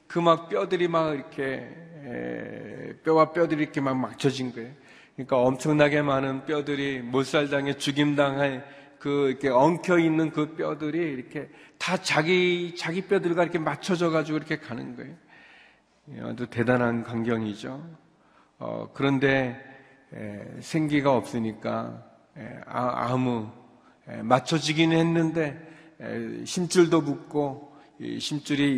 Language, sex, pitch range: Korean, male, 130-165 Hz